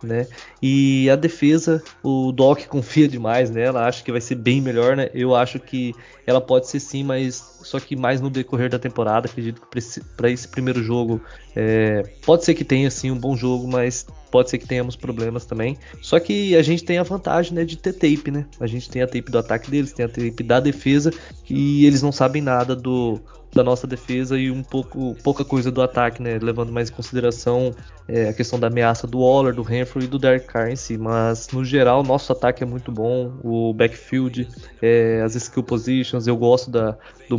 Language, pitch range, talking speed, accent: Portuguese, 120-135 Hz, 205 wpm, Brazilian